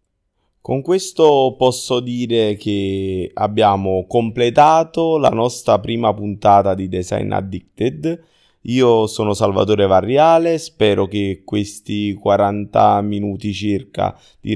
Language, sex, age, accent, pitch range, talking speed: Italian, male, 20-39, native, 100-120 Hz, 105 wpm